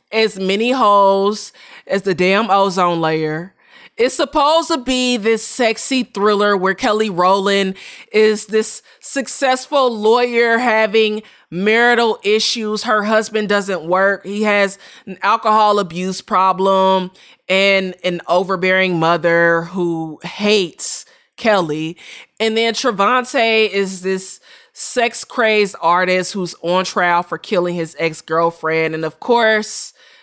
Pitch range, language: 180-225 Hz, English